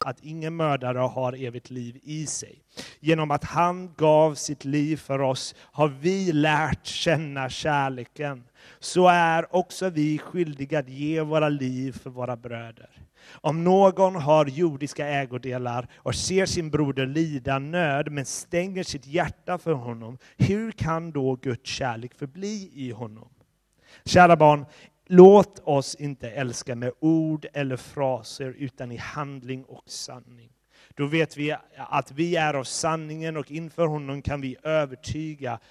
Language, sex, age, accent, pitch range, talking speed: Swedish, male, 30-49, native, 130-160 Hz, 145 wpm